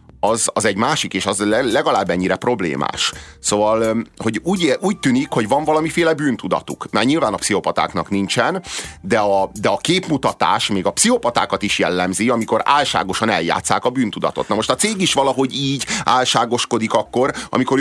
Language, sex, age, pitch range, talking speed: Hungarian, male, 30-49, 115-175 Hz, 160 wpm